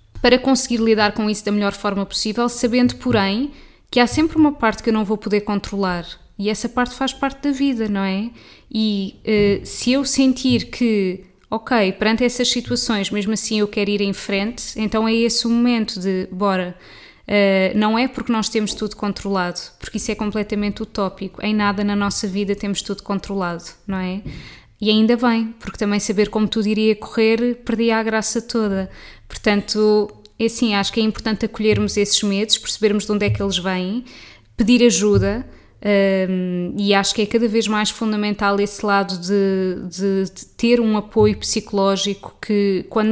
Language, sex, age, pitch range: Portuguese, female, 20-39, 200-235 Hz